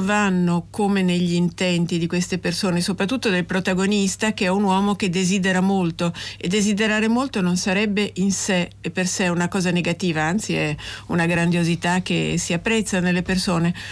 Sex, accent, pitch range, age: female, native, 175-205 Hz, 50-69